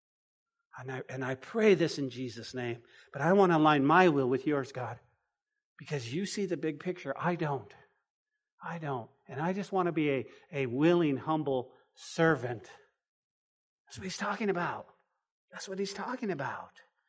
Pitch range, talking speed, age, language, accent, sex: 185-270 Hz, 175 wpm, 50-69, English, American, male